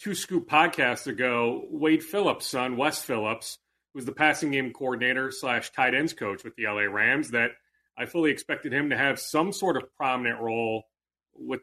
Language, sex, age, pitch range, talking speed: English, male, 30-49, 120-180 Hz, 180 wpm